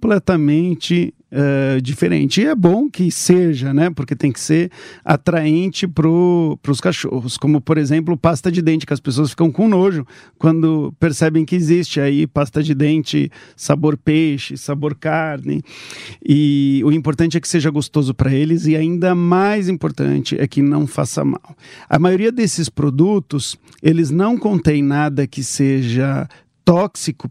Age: 50-69